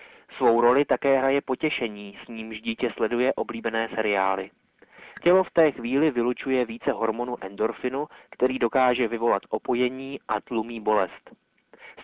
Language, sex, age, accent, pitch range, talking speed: Czech, male, 30-49, native, 115-135 Hz, 135 wpm